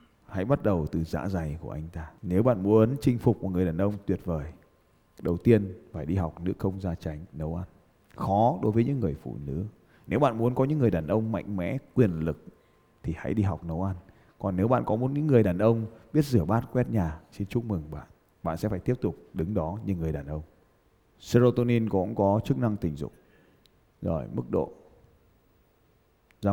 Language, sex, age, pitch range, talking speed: Vietnamese, male, 20-39, 95-140 Hz, 215 wpm